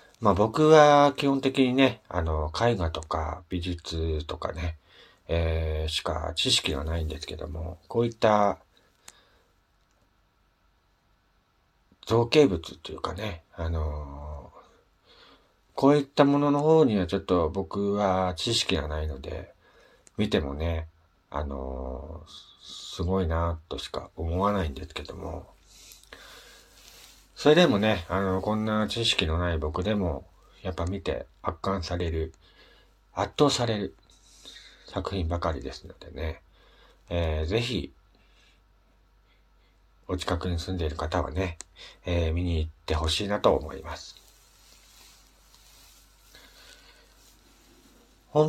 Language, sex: Japanese, male